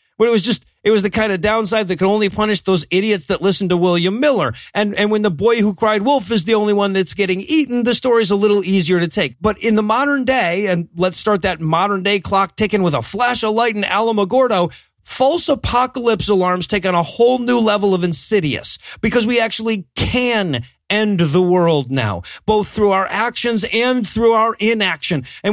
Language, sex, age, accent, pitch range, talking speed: English, male, 40-59, American, 190-230 Hz, 215 wpm